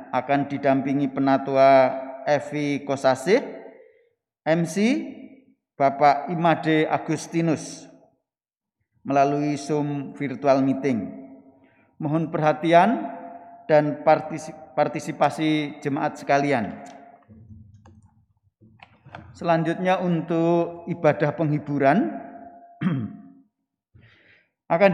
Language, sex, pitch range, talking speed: Indonesian, male, 135-170 Hz, 60 wpm